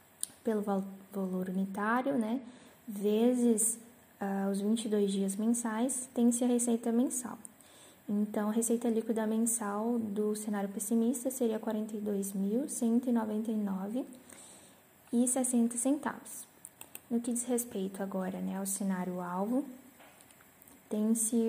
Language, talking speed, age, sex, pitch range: Portuguese, 95 wpm, 10-29, female, 200-235 Hz